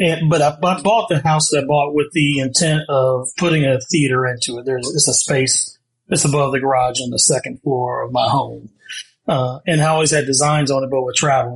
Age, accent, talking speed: 30-49, American, 230 wpm